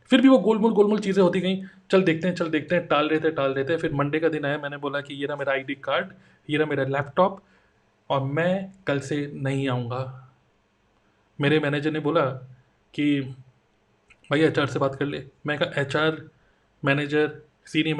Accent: native